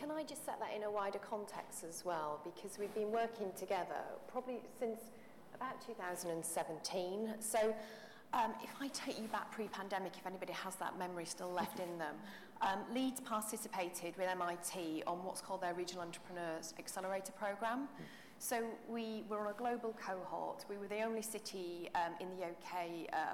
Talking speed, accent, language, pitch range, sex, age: 175 wpm, British, English, 175-220 Hz, female, 40-59